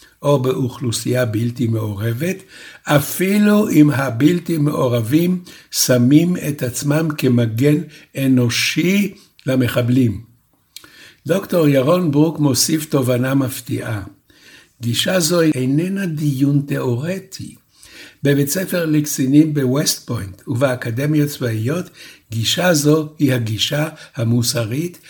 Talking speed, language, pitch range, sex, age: 90 wpm, Hebrew, 125-160 Hz, male, 60-79